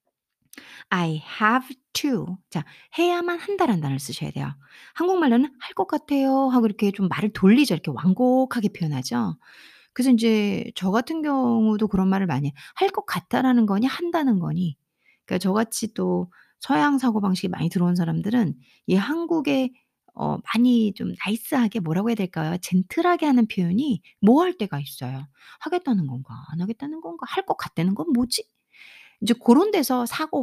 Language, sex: Korean, female